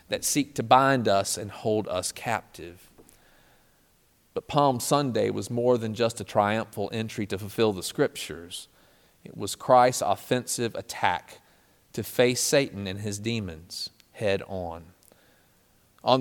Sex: male